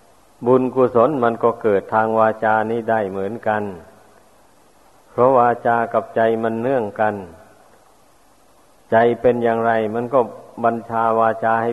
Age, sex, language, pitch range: 50-69, male, Thai, 110-115 Hz